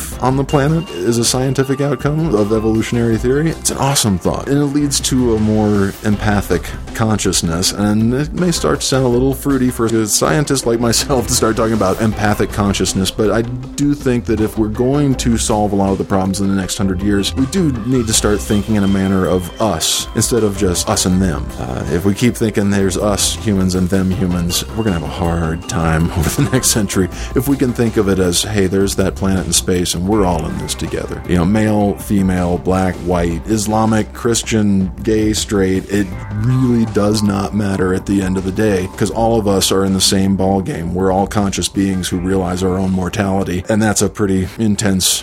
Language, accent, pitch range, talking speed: English, American, 95-110 Hz, 220 wpm